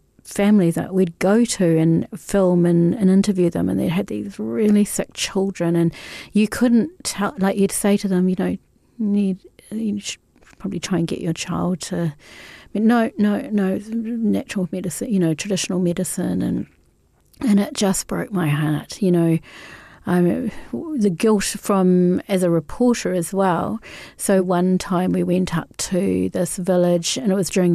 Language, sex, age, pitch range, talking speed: English, female, 40-59, 170-205 Hz, 175 wpm